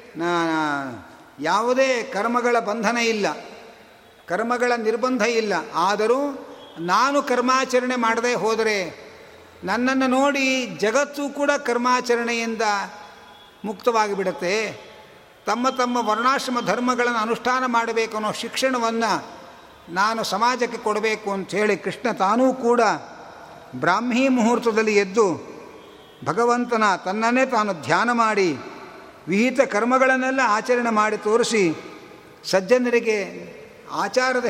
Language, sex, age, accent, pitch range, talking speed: Kannada, male, 50-69, native, 195-245 Hz, 85 wpm